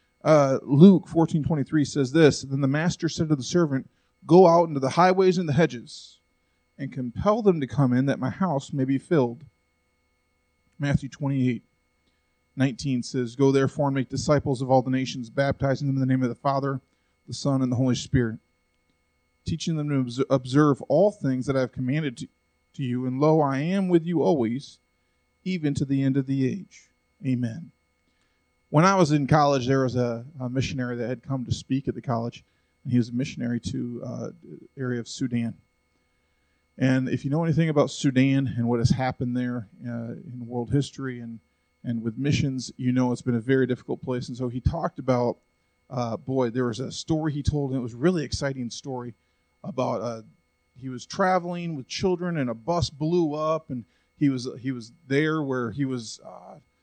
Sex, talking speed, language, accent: male, 195 wpm, English, American